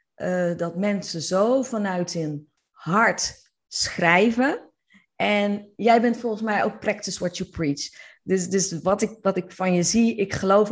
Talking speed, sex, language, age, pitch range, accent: 160 wpm, female, Dutch, 30-49, 185-245 Hz, Dutch